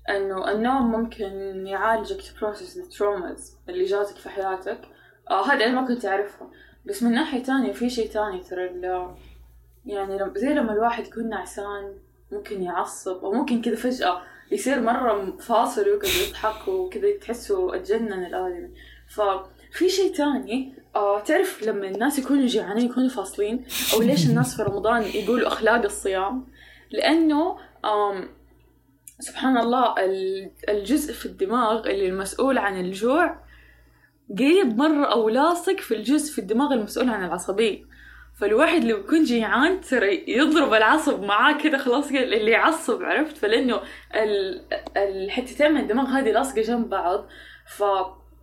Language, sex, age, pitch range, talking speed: Arabic, female, 10-29, 195-275 Hz, 140 wpm